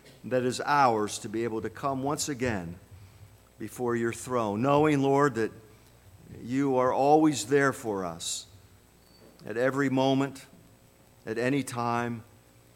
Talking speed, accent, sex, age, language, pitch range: 130 wpm, American, male, 50-69, English, 110-140 Hz